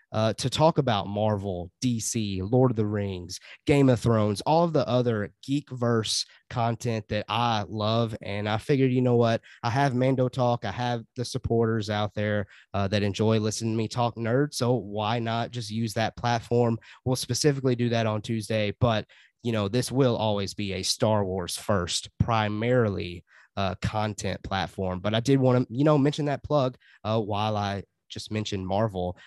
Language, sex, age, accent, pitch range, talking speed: English, male, 20-39, American, 105-120 Hz, 185 wpm